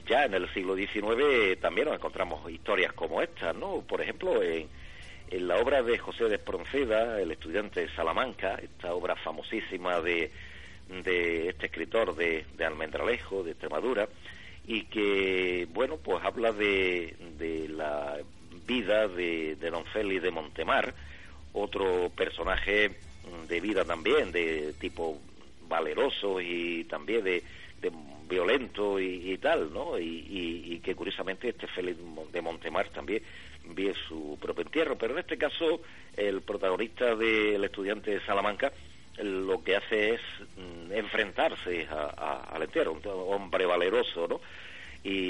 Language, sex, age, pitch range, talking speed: Spanish, male, 50-69, 85-110 Hz, 145 wpm